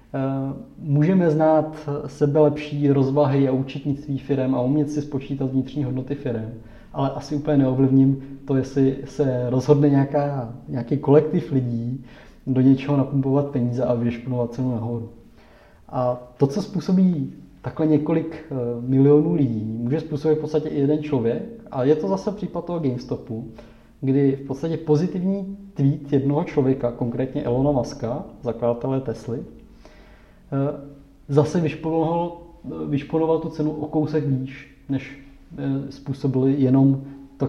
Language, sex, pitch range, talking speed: Czech, male, 130-150 Hz, 125 wpm